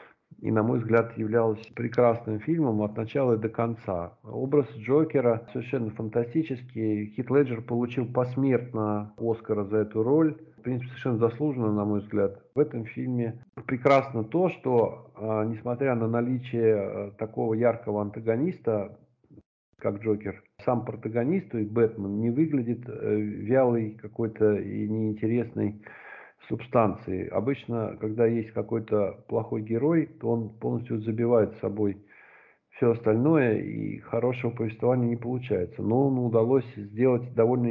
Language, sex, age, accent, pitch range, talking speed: Russian, male, 50-69, native, 110-125 Hz, 125 wpm